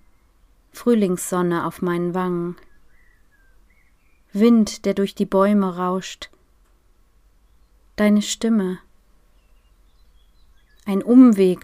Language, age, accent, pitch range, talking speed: German, 30-49, German, 175-215 Hz, 70 wpm